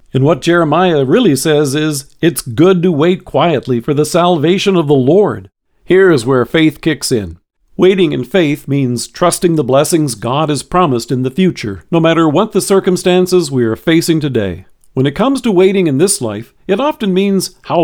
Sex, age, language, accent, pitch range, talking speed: male, 50-69, English, American, 135-185 Hz, 190 wpm